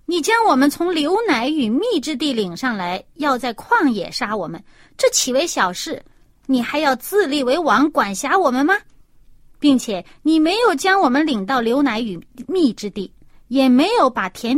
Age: 30-49